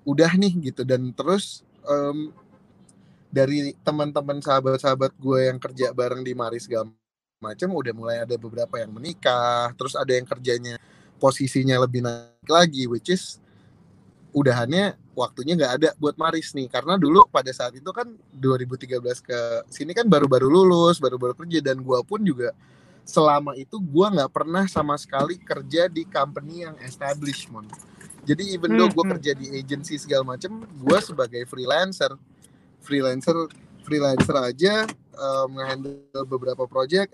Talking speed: 140 wpm